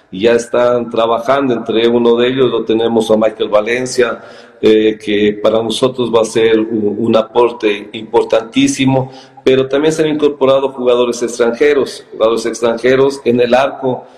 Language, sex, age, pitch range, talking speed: Spanish, male, 50-69, 115-130 Hz, 150 wpm